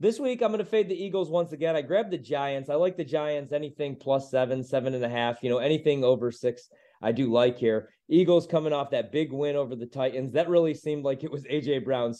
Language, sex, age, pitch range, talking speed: English, male, 30-49, 130-165 Hz, 250 wpm